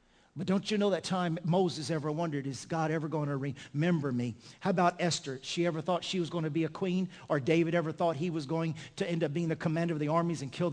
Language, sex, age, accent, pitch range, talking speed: English, male, 50-69, American, 145-165 Hz, 265 wpm